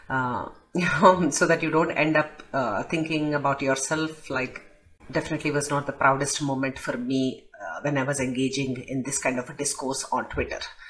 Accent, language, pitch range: Indian, English, 135-160 Hz